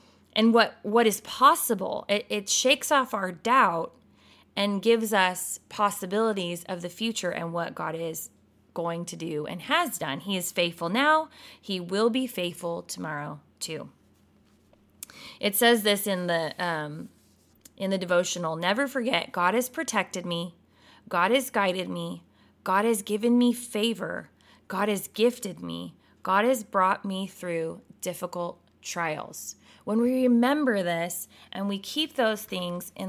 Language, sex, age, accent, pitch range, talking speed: English, female, 20-39, American, 175-240 Hz, 150 wpm